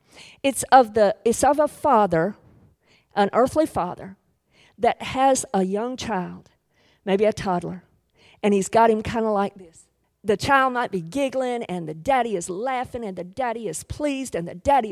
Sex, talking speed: female, 175 wpm